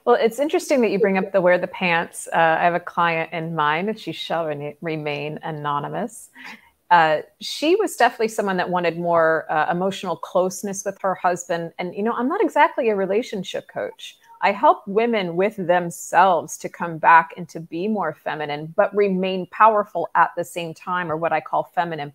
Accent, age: American, 30-49